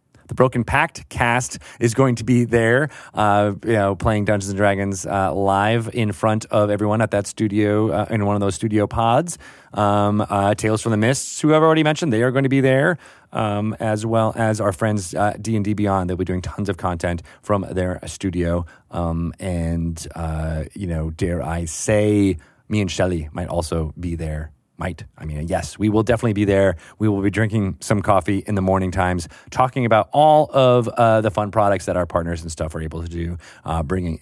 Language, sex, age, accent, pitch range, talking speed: English, male, 30-49, American, 85-110 Hz, 210 wpm